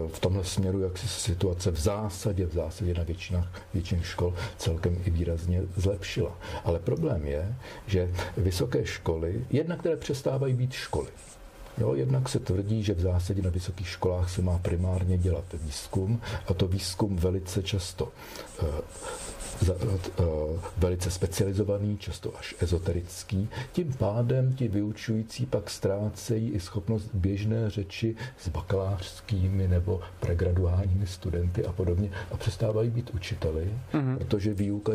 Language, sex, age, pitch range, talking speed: Czech, male, 50-69, 90-110 Hz, 130 wpm